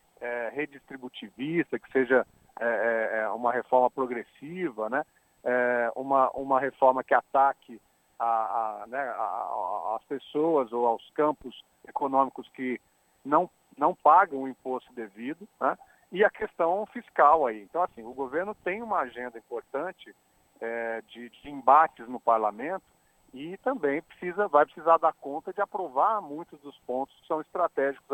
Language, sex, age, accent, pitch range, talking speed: Portuguese, male, 40-59, Brazilian, 120-165 Hz, 145 wpm